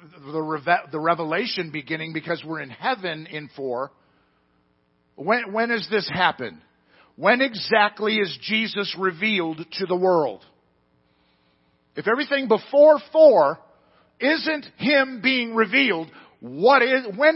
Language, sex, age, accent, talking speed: English, male, 50-69, American, 115 wpm